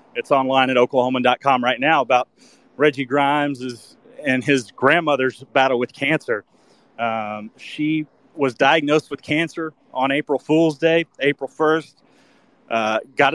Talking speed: 130 wpm